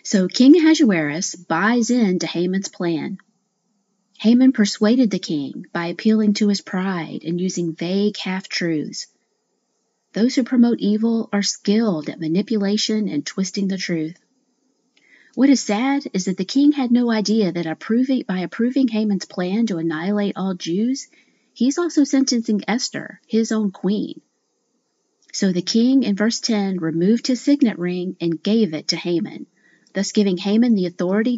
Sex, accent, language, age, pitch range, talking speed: female, American, English, 40-59, 180-235 Hz, 150 wpm